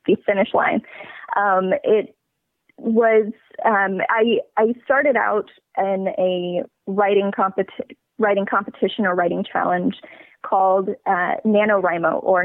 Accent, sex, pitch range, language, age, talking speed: American, female, 185-220 Hz, English, 20-39, 115 wpm